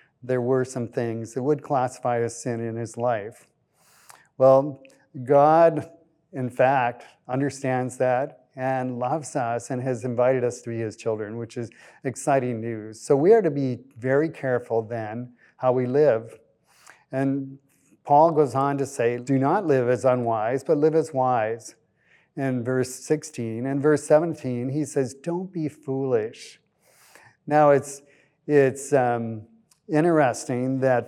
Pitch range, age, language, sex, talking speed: 125-150 Hz, 40-59, English, male, 145 wpm